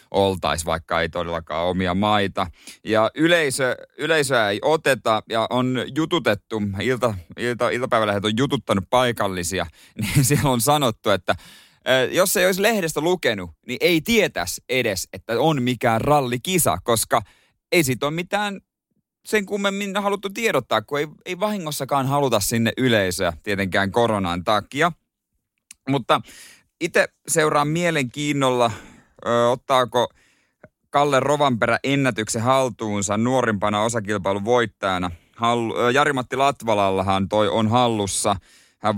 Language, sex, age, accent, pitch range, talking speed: Finnish, male, 30-49, native, 100-140 Hz, 120 wpm